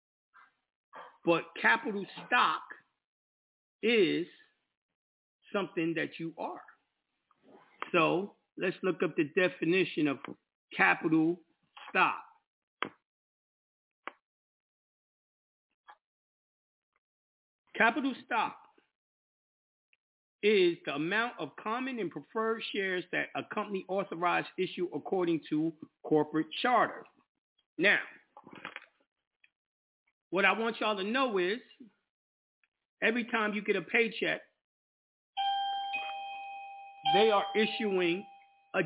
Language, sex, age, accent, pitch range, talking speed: English, male, 50-69, American, 180-295 Hz, 85 wpm